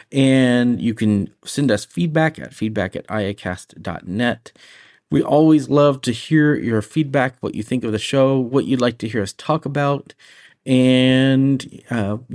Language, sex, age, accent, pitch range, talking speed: English, male, 30-49, American, 105-130 Hz, 160 wpm